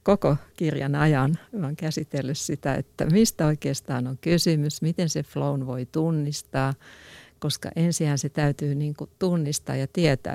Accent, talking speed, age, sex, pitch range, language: native, 145 wpm, 60-79, female, 140-160 Hz, Finnish